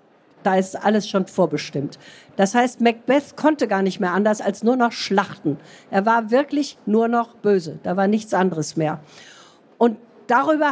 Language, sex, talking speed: German, female, 170 wpm